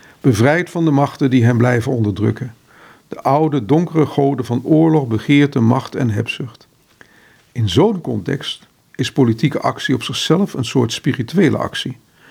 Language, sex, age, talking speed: Dutch, male, 50-69, 145 wpm